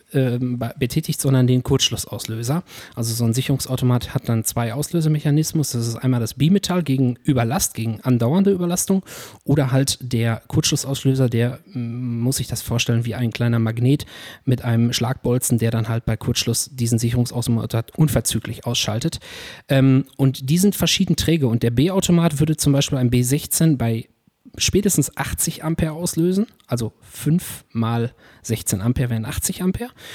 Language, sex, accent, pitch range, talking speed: German, male, German, 115-150 Hz, 145 wpm